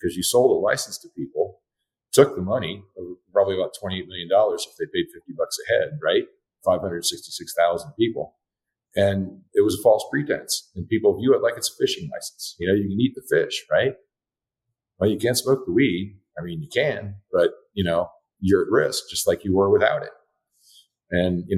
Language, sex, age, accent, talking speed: English, male, 50-69, American, 205 wpm